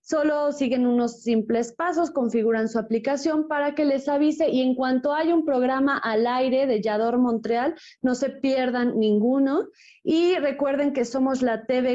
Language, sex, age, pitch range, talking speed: Spanish, female, 20-39, 225-275 Hz, 165 wpm